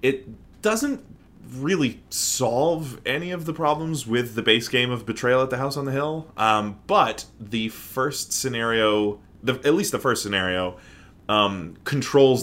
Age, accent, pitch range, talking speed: 20-39, American, 100-130 Hz, 160 wpm